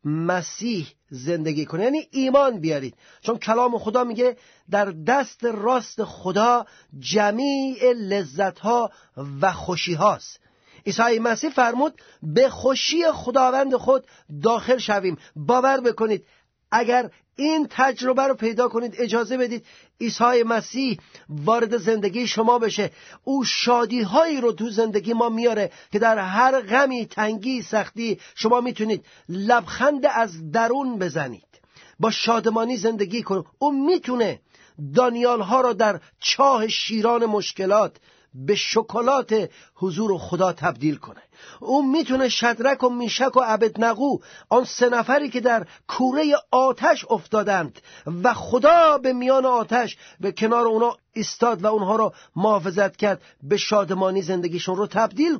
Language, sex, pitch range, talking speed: Persian, male, 200-250 Hz, 130 wpm